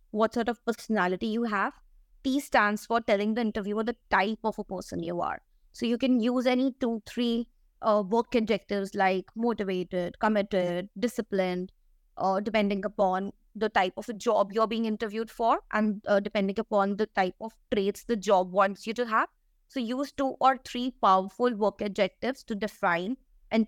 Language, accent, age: English, Indian, 20-39